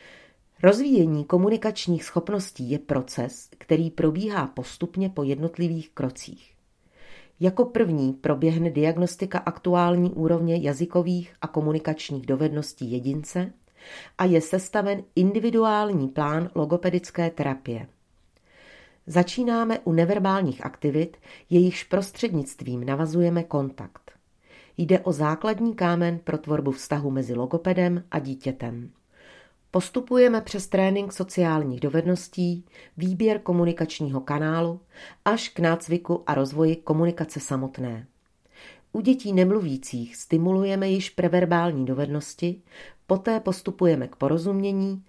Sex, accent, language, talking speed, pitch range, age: female, native, Czech, 100 wpm, 145-185 Hz, 40-59